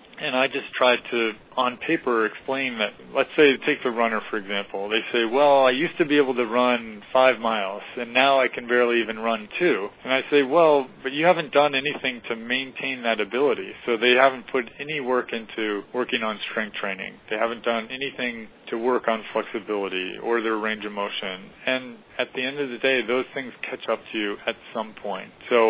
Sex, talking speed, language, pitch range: male, 210 wpm, English, 110-130 Hz